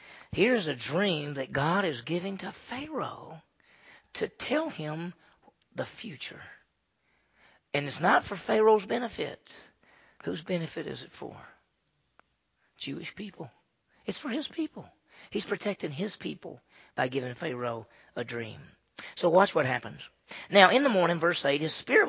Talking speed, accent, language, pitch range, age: 140 wpm, American, English, 155-200 Hz, 40-59